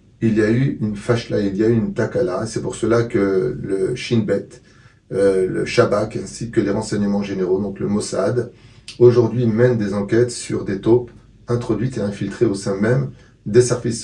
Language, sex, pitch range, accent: French, male, 100-125 Hz, French